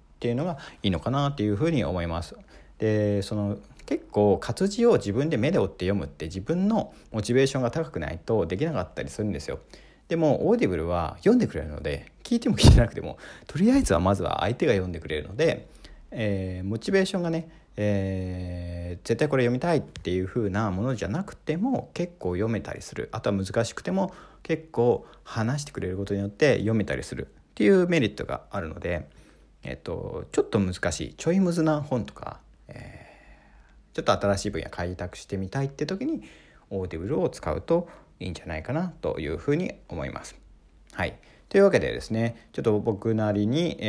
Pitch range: 90-140 Hz